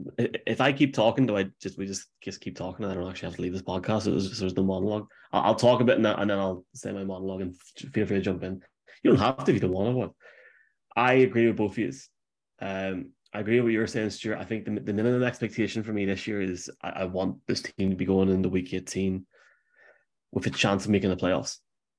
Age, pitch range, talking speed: 20-39, 90-105 Hz, 255 wpm